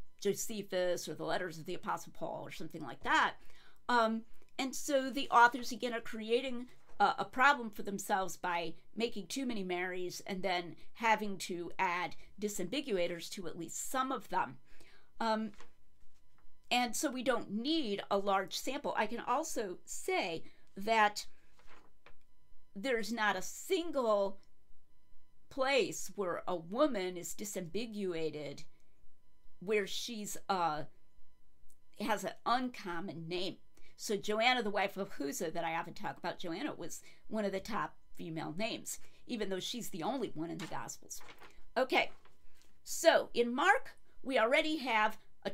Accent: American